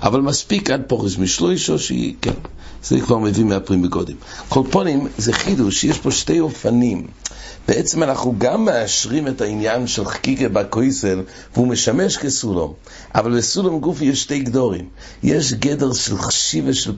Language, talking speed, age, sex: English, 120 wpm, 60-79, male